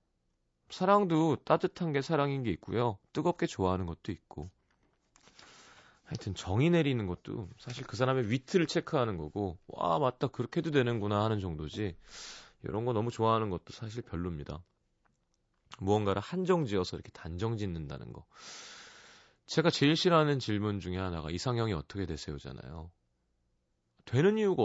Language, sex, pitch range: Korean, male, 85-130 Hz